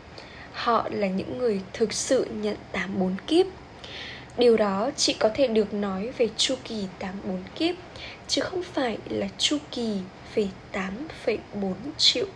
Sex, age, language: female, 10-29, Vietnamese